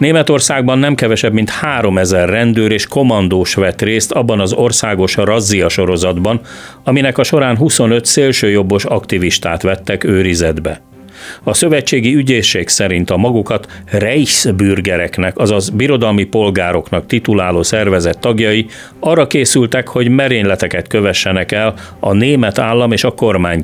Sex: male